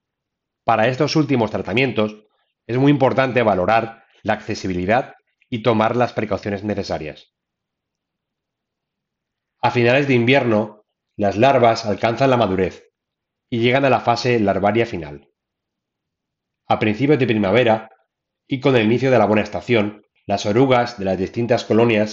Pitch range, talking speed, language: 100-125 Hz, 135 wpm, Spanish